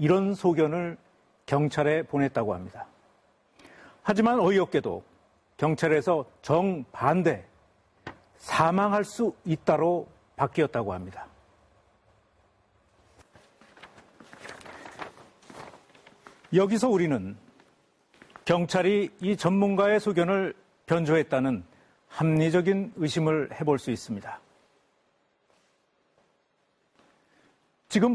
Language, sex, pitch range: Korean, male, 140-190 Hz